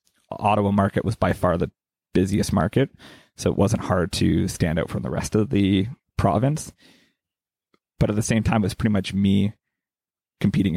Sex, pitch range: male, 95-115 Hz